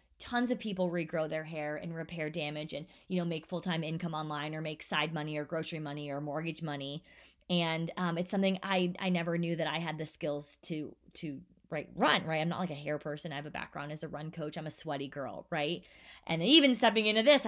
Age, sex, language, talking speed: 20-39, female, English, 235 wpm